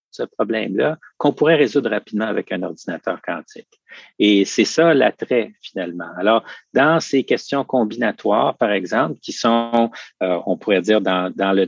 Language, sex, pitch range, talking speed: French, male, 95-120 Hz, 160 wpm